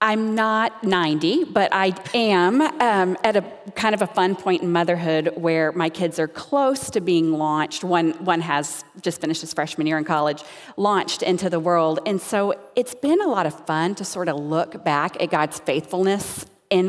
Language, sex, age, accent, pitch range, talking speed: English, female, 40-59, American, 155-195 Hz, 195 wpm